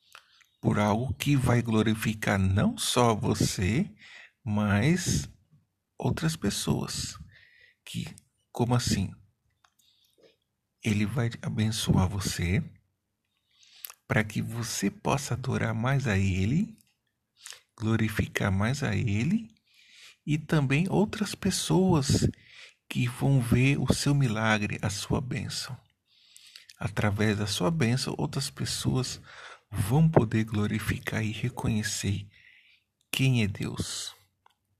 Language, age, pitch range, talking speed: Portuguese, 50-69, 105-135 Hz, 95 wpm